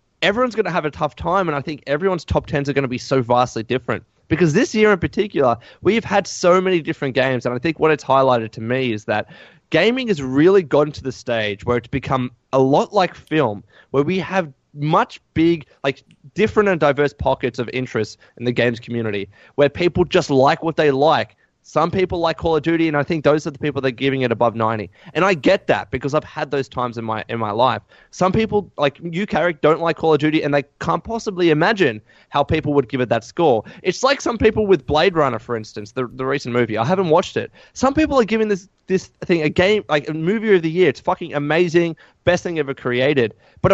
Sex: male